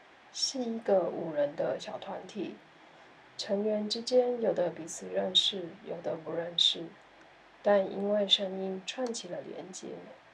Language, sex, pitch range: Chinese, female, 175-210 Hz